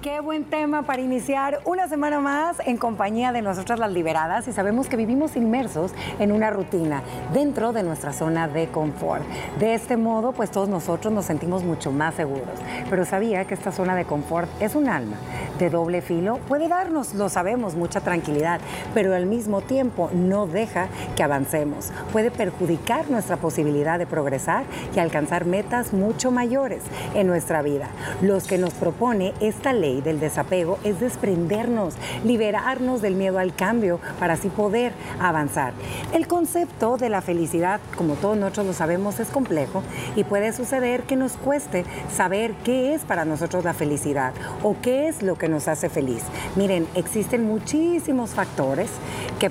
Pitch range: 165-235 Hz